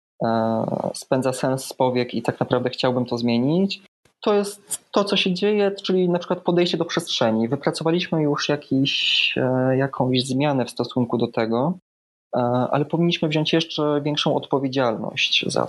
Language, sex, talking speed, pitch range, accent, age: Polish, male, 140 wpm, 120-150 Hz, native, 20-39